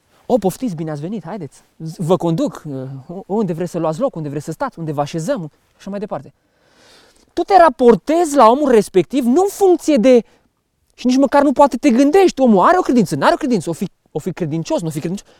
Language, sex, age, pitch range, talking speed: English, male, 20-39, 185-265 Hz, 225 wpm